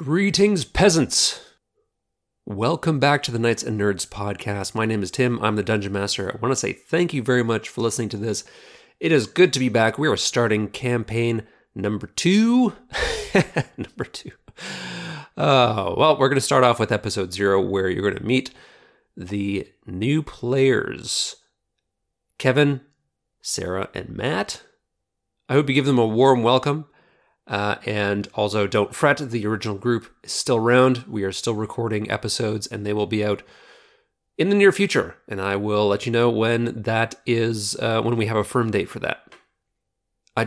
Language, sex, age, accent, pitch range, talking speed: English, male, 30-49, American, 105-130 Hz, 175 wpm